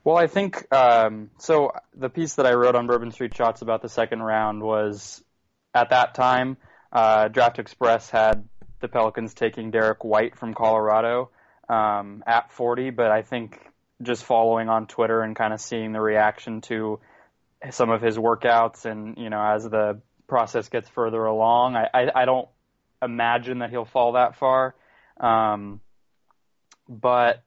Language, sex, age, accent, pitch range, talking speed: English, male, 20-39, American, 110-125 Hz, 165 wpm